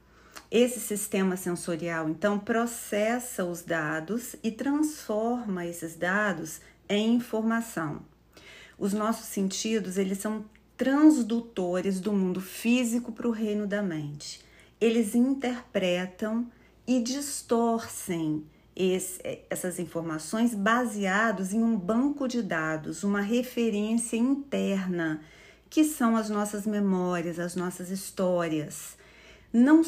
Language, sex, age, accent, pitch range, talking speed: Portuguese, female, 40-59, Brazilian, 185-235 Hz, 100 wpm